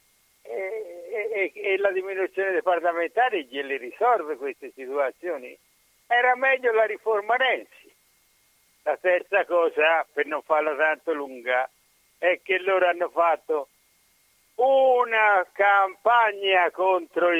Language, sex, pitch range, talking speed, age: Italian, male, 170-245 Hz, 110 wpm, 60-79